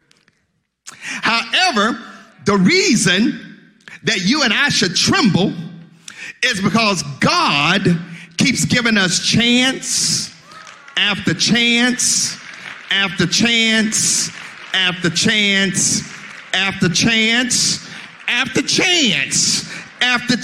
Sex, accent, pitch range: male, American, 185-245 Hz